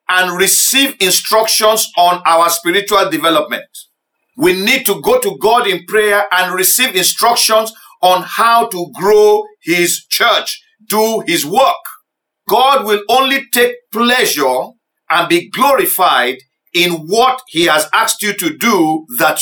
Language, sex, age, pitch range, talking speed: English, male, 50-69, 175-260 Hz, 135 wpm